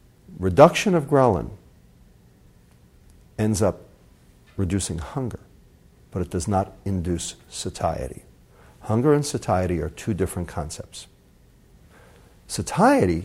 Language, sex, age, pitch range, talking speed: English, male, 50-69, 90-115 Hz, 95 wpm